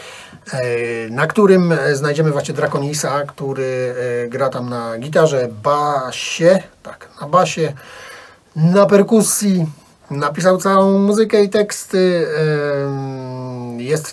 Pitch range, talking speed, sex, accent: 125-175 Hz, 95 wpm, male, native